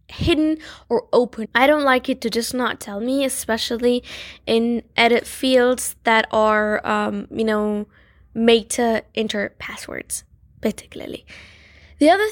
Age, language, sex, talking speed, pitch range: 10-29, English, female, 135 wpm, 225-275 Hz